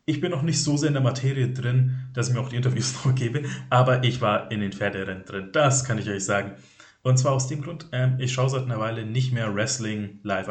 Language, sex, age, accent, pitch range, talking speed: German, male, 30-49, German, 115-140 Hz, 245 wpm